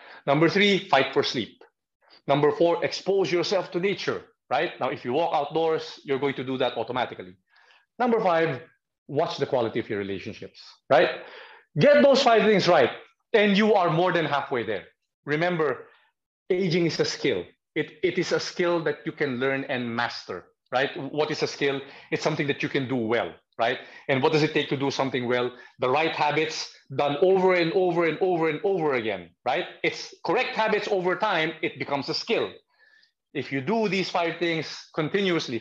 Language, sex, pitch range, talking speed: English, male, 130-180 Hz, 185 wpm